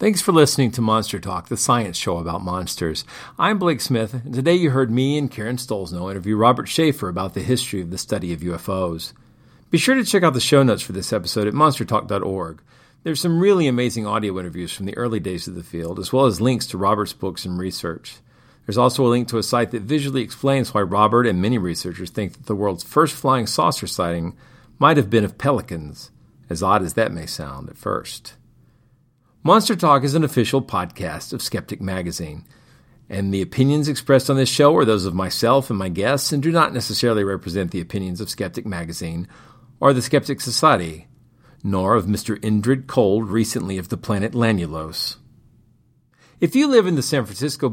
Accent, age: American, 50-69